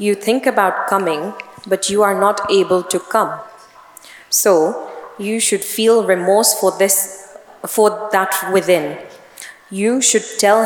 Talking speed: 135 wpm